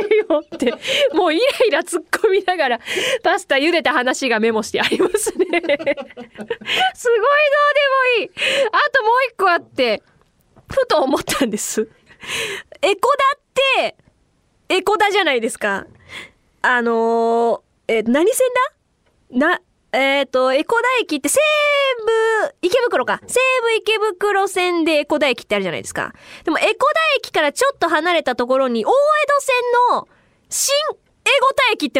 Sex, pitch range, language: female, 270-420 Hz, Japanese